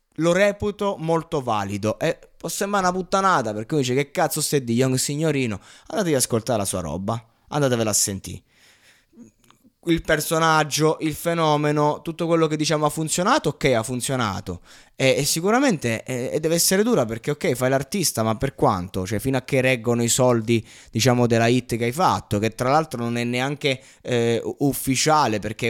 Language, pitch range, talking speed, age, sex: Italian, 115-150 Hz, 180 wpm, 20-39, male